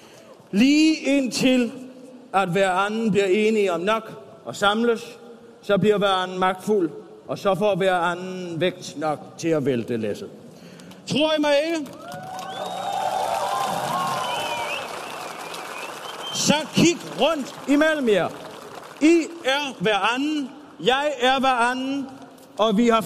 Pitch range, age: 235-285 Hz, 50-69